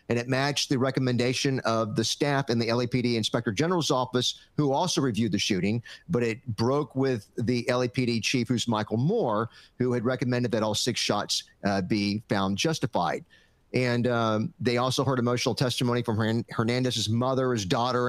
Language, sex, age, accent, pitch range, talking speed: English, male, 40-59, American, 110-130 Hz, 175 wpm